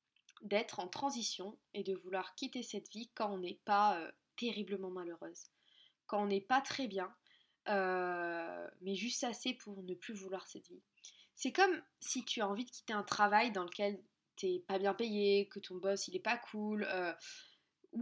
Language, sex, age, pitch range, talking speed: French, female, 20-39, 200-260 Hz, 185 wpm